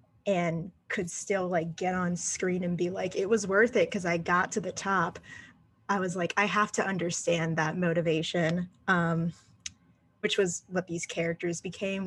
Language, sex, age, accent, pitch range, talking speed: English, female, 10-29, American, 170-195 Hz, 180 wpm